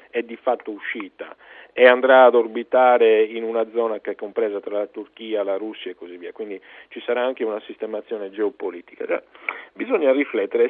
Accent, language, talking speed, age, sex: native, Italian, 175 wpm, 40-59, male